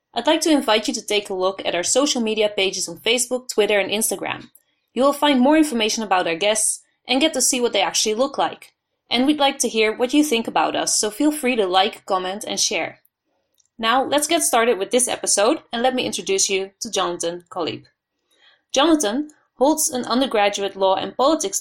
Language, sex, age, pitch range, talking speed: English, female, 20-39, 195-260 Hz, 210 wpm